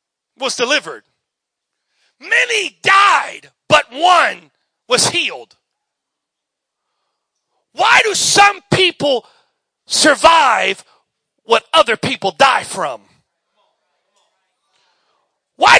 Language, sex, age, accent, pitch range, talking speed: English, male, 40-59, American, 280-355 Hz, 70 wpm